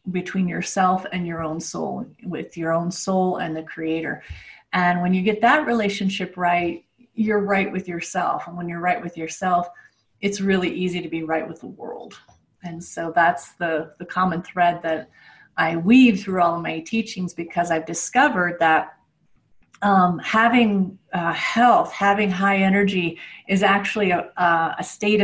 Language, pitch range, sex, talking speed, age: English, 170-200 Hz, female, 165 wpm, 30-49